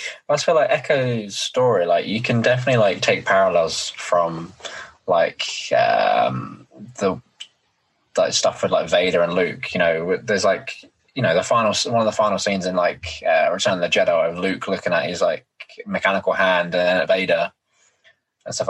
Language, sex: English, male